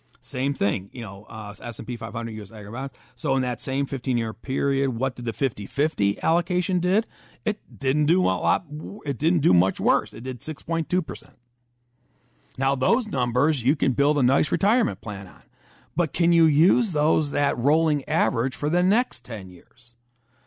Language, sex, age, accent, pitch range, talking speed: English, male, 40-59, American, 115-145 Hz, 180 wpm